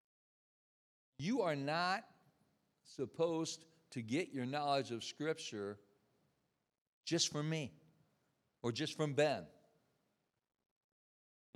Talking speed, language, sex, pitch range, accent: 95 wpm, English, male, 130-165 Hz, American